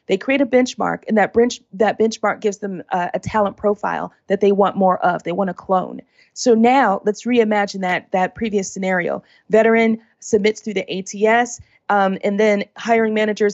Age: 30-49